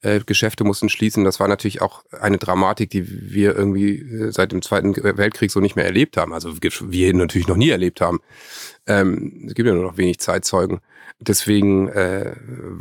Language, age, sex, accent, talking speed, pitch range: German, 30-49, male, German, 180 wpm, 110-145 Hz